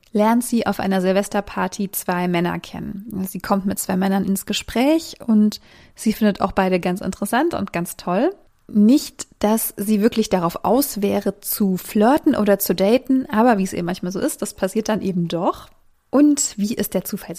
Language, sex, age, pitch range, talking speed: German, female, 20-39, 195-240 Hz, 185 wpm